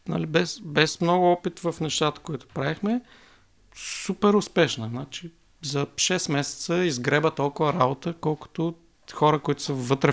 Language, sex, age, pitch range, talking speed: Bulgarian, male, 50-69, 125-160 Hz, 130 wpm